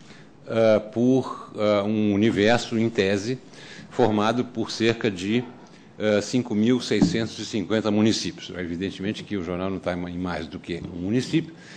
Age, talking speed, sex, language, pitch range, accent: 60-79, 140 wpm, male, Portuguese, 95-125 Hz, Brazilian